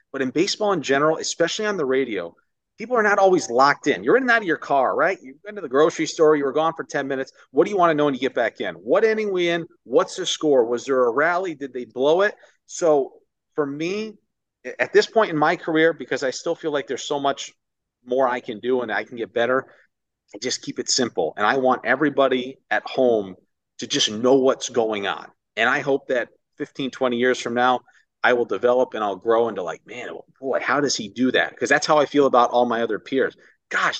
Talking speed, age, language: 245 wpm, 40-59, English